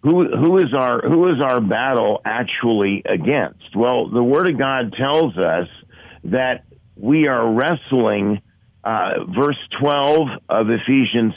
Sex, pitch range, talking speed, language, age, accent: male, 110-135 Hz, 135 wpm, English, 50-69, American